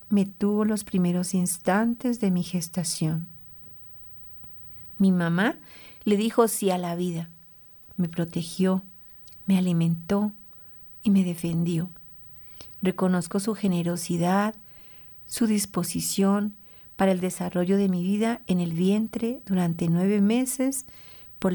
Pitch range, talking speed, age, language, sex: 170-210 Hz, 115 wpm, 50-69, Spanish, female